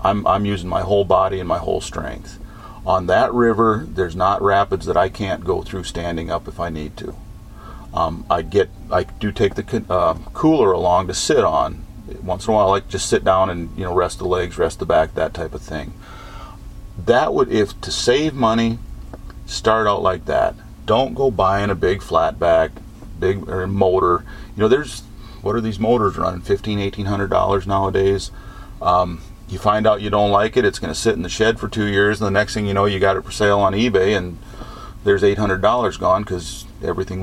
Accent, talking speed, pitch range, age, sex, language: American, 215 wpm, 95-110 Hz, 40-59, male, English